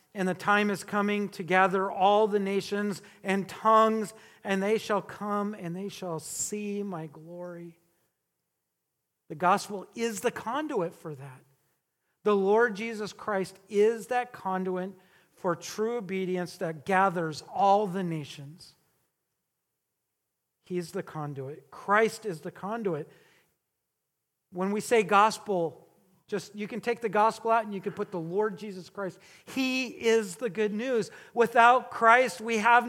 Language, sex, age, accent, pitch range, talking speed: English, male, 40-59, American, 175-220 Hz, 145 wpm